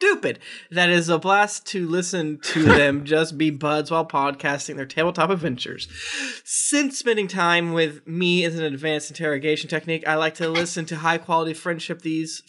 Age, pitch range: 20-39, 140-185 Hz